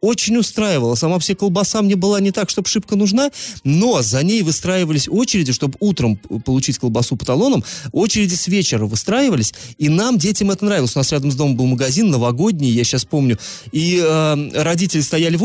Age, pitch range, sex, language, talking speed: 30-49, 130-195 Hz, male, Russian, 185 wpm